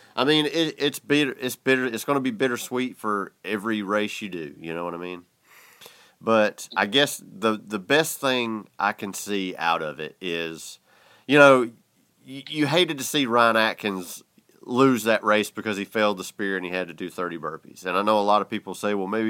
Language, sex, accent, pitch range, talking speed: English, male, American, 95-120 Hz, 220 wpm